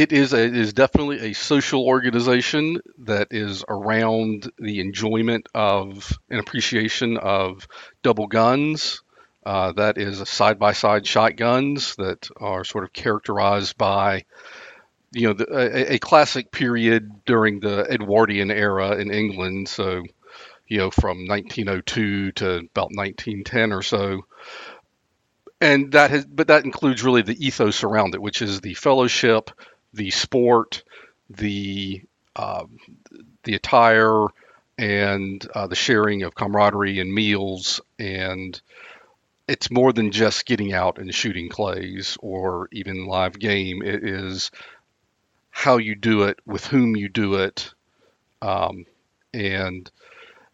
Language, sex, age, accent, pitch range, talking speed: English, male, 50-69, American, 100-120 Hz, 130 wpm